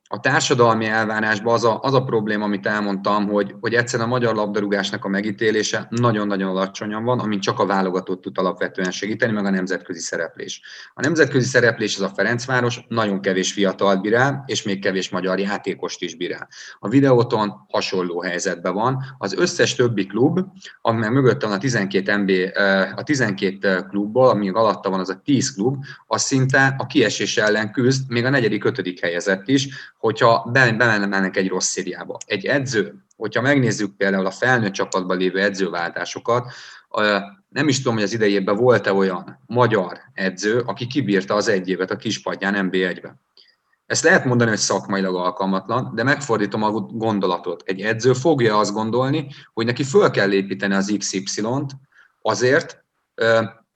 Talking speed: 155 wpm